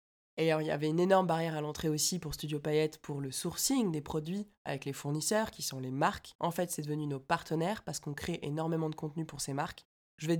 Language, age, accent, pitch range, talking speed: French, 20-39, French, 150-170 Hz, 250 wpm